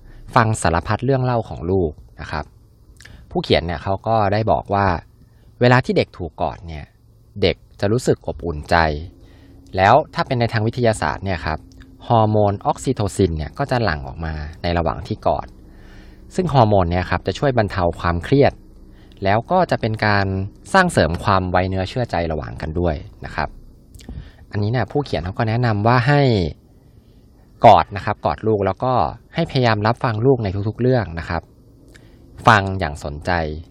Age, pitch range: 20-39, 85-115 Hz